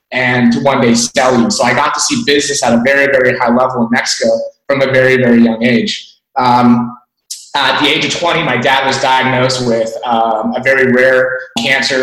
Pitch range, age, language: 120-140 Hz, 30-49, English